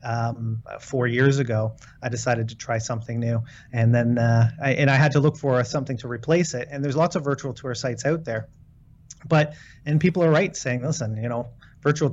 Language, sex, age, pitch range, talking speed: English, male, 30-49, 120-140 Hz, 215 wpm